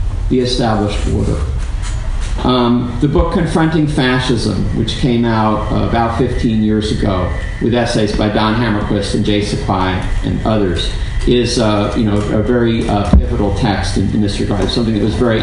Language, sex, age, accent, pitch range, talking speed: English, male, 50-69, American, 105-125 Hz, 165 wpm